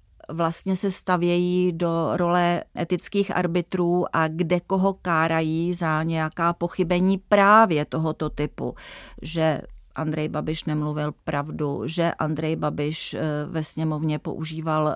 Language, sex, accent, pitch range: Czech, female, native, 155-190 Hz